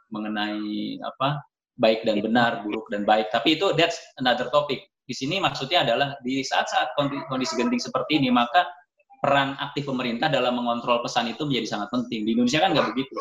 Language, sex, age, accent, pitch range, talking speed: Indonesian, male, 20-39, native, 120-140 Hz, 175 wpm